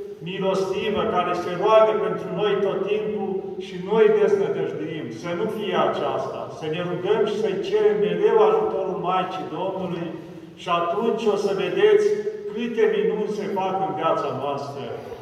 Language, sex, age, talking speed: Romanian, male, 50-69, 150 wpm